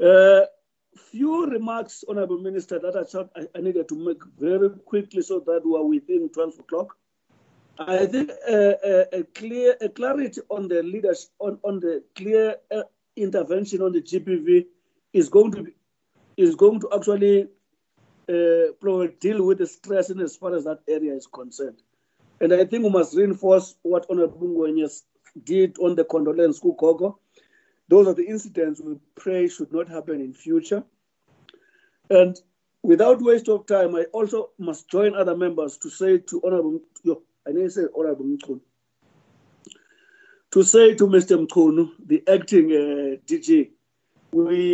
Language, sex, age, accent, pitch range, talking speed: English, male, 50-69, South African, 165-275 Hz, 155 wpm